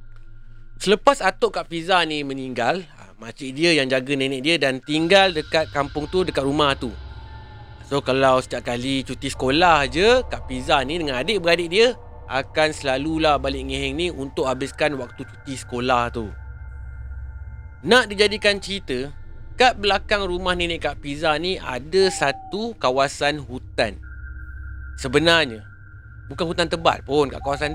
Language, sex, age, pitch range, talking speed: Malay, male, 30-49, 120-165 Hz, 140 wpm